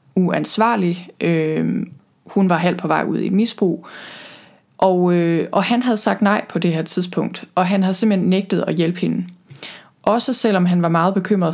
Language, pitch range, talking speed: Danish, 180-210 Hz, 185 wpm